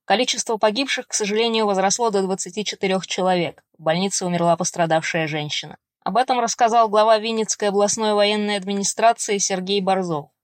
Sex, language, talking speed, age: female, Russian, 130 wpm, 20-39